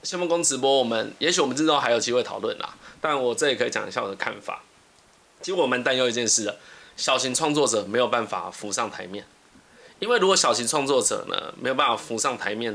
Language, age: Chinese, 20-39